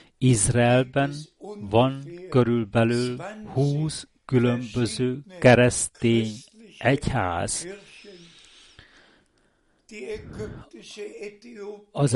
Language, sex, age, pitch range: Hungarian, male, 60-79, 120-150 Hz